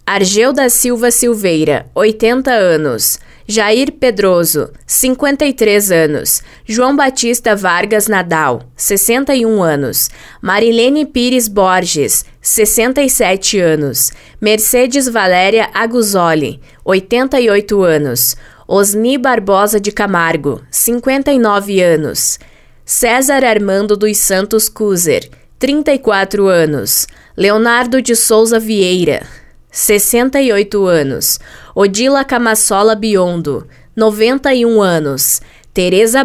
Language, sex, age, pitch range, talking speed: Portuguese, female, 20-39, 185-245 Hz, 85 wpm